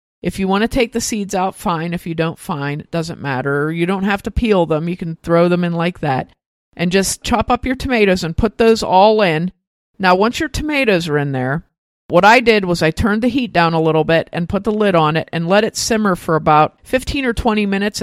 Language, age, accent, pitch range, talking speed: English, 50-69, American, 165-200 Hz, 250 wpm